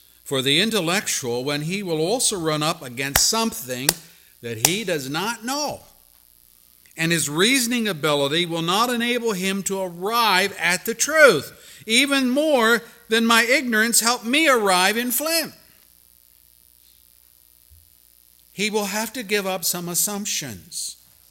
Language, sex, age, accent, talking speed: English, male, 50-69, American, 130 wpm